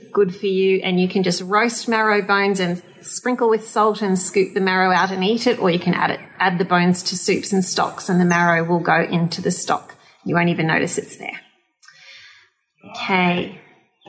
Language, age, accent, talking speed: English, 30-49, Australian, 210 wpm